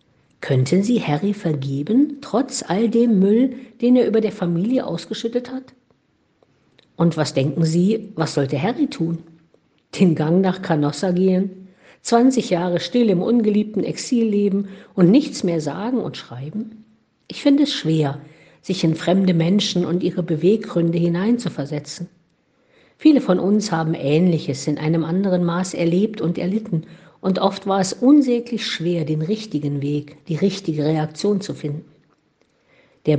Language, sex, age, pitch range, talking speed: German, female, 50-69, 150-220 Hz, 145 wpm